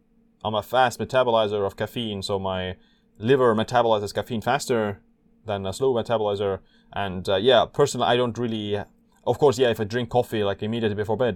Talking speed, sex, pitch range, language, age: 180 wpm, male, 100-125 Hz, English, 20-39